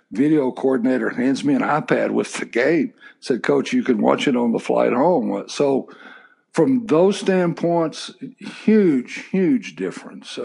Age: 60-79